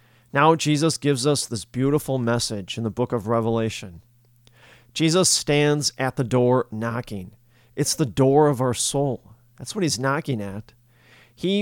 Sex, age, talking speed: male, 40-59, 155 wpm